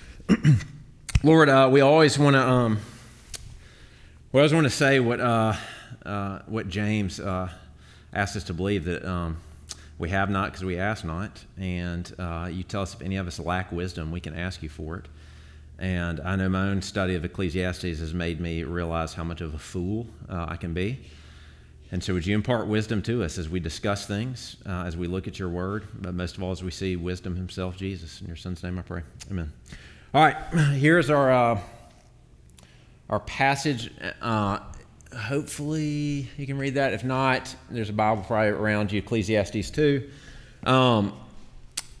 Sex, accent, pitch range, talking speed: male, American, 85-120 Hz, 180 wpm